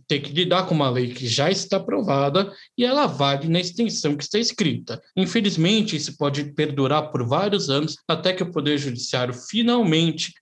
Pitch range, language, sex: 145-205 Hz, Portuguese, male